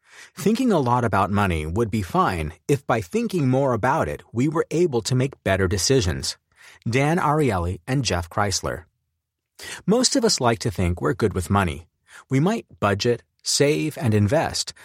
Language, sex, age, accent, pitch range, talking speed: English, male, 30-49, American, 95-155 Hz, 170 wpm